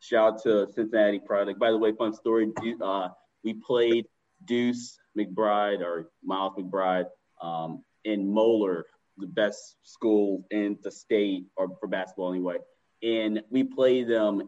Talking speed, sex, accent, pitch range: 150 wpm, male, American, 100-125 Hz